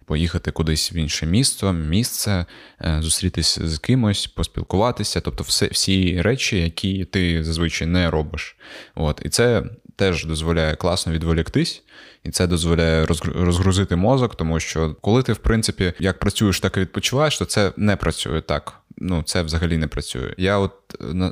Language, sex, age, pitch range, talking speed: Ukrainian, male, 20-39, 80-100 Hz, 155 wpm